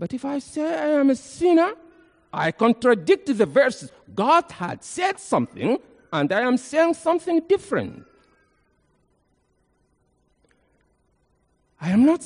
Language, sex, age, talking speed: English, male, 60-79, 120 wpm